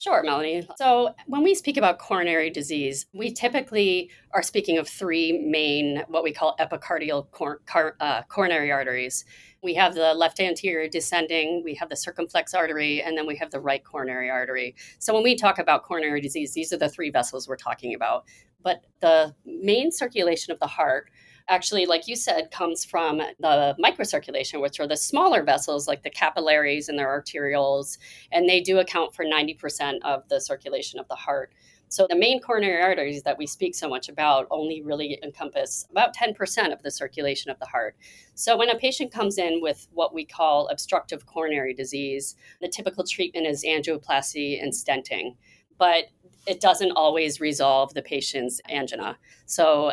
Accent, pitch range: American, 145-185 Hz